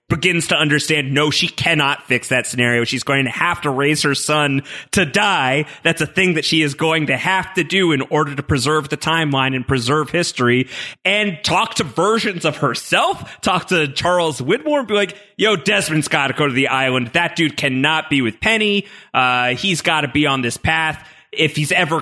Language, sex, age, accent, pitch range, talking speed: English, male, 30-49, American, 135-190 Hz, 205 wpm